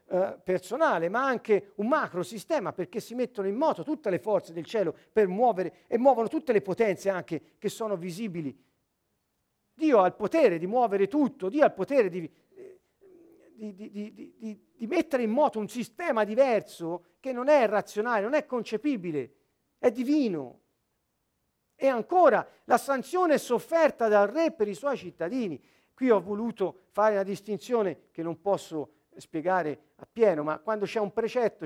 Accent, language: native, Italian